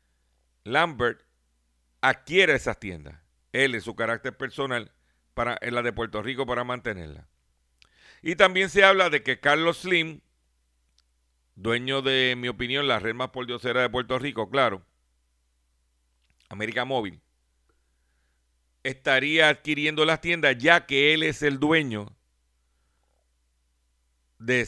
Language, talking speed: Spanish, 125 wpm